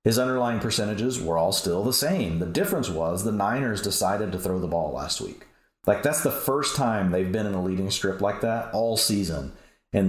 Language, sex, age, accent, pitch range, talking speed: English, male, 30-49, American, 85-105 Hz, 215 wpm